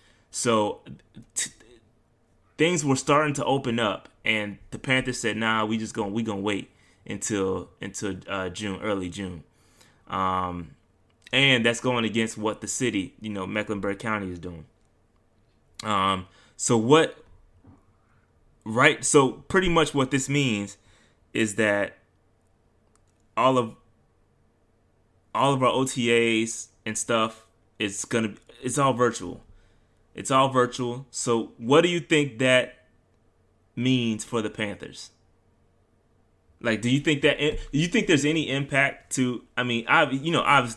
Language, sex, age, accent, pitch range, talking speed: English, male, 20-39, American, 100-130 Hz, 140 wpm